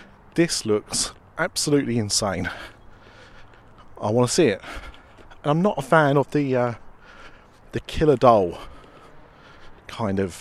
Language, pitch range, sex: English, 100-130 Hz, male